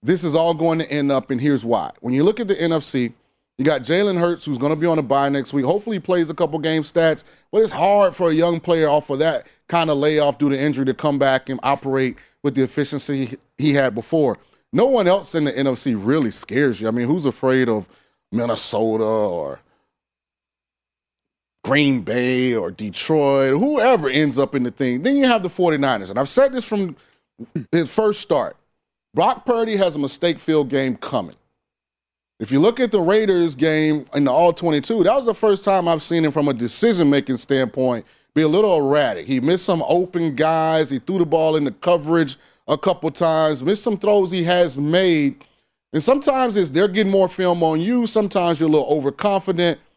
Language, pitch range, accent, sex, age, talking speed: English, 135-180 Hz, American, male, 30-49, 205 wpm